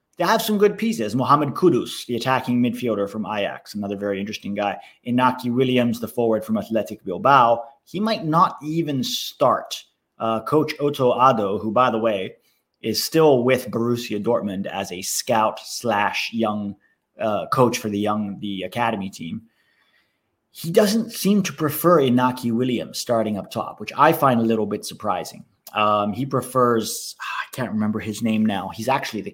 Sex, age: male, 30-49